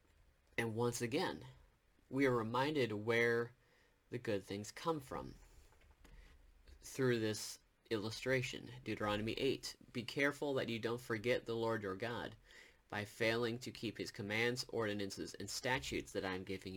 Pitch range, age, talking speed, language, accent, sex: 100-125 Hz, 30-49, 145 wpm, English, American, male